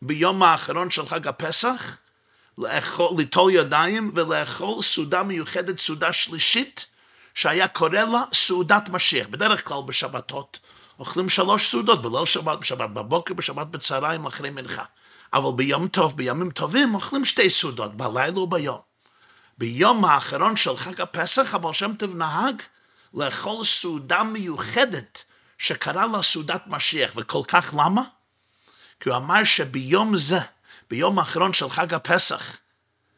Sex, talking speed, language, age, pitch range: male, 125 wpm, Hebrew, 50-69, 140-200 Hz